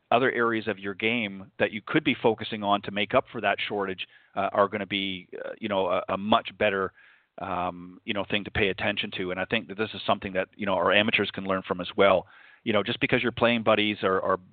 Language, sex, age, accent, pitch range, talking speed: English, male, 40-59, American, 95-110 Hz, 260 wpm